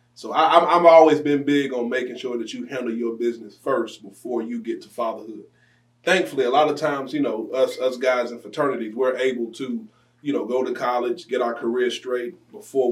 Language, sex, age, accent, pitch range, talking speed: English, male, 30-49, American, 120-150 Hz, 205 wpm